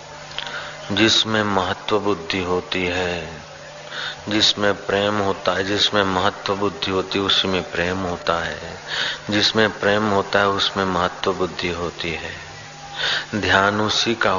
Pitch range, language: 85-100 Hz, Hindi